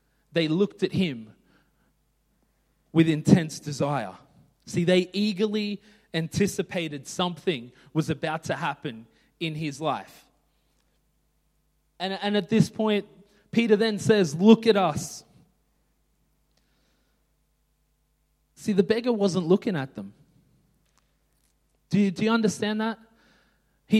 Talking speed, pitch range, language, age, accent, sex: 110 wpm, 145-190 Hz, English, 20-39, Australian, male